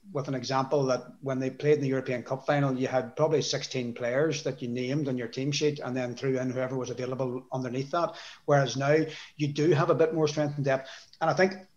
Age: 30-49